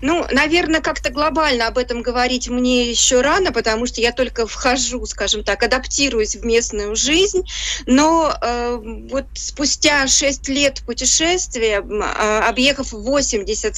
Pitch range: 220-275 Hz